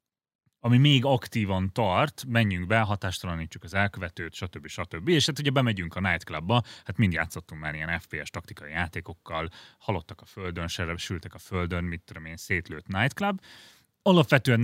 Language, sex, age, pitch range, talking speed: Hungarian, male, 30-49, 90-120 Hz, 150 wpm